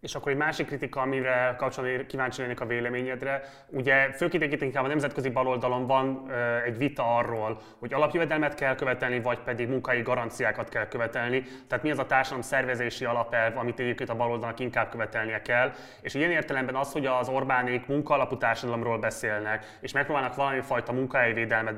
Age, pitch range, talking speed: 20-39, 120-135 Hz, 175 wpm